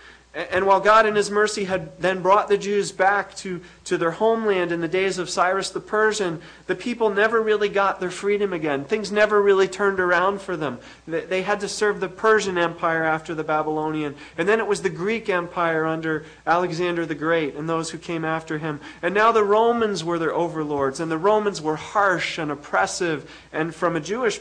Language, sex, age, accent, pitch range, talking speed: English, male, 40-59, American, 155-200 Hz, 205 wpm